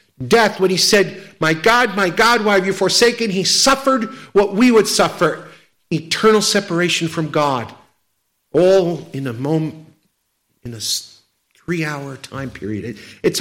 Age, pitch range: 50-69, 130-185 Hz